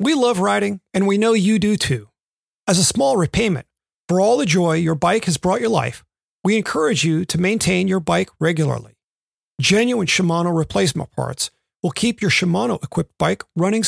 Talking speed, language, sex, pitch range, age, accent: 175 wpm, English, male, 180-230 Hz, 40-59, American